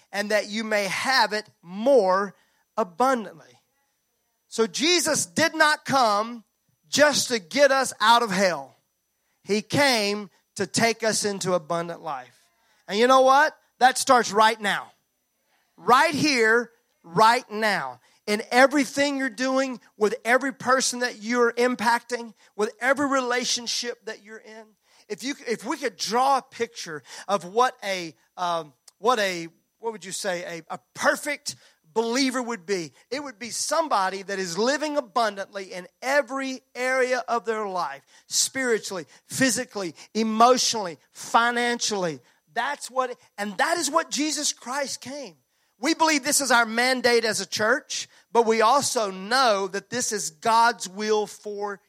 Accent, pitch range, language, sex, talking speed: American, 200-260 Hz, English, male, 140 wpm